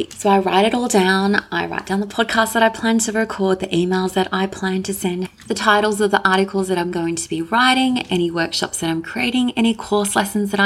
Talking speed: 240 wpm